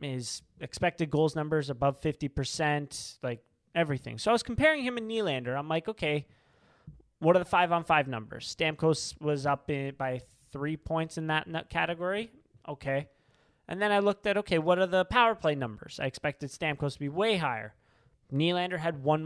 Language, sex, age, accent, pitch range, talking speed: English, male, 20-39, American, 140-175 Hz, 175 wpm